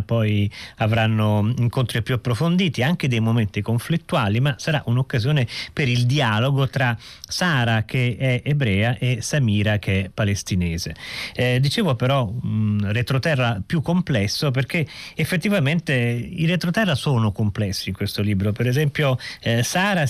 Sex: male